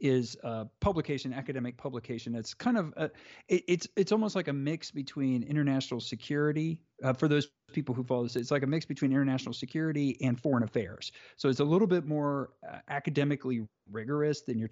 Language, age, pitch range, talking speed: English, 40-59, 120-150 Hz, 185 wpm